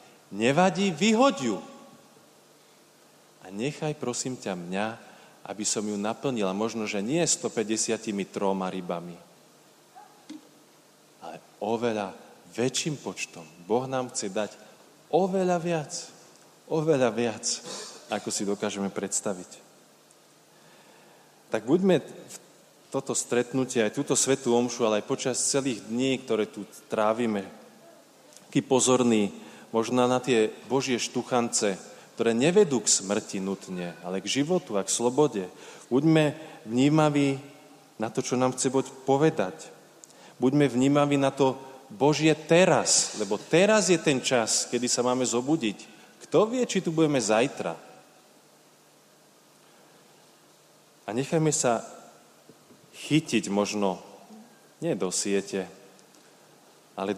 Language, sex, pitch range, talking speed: Slovak, male, 105-140 Hz, 110 wpm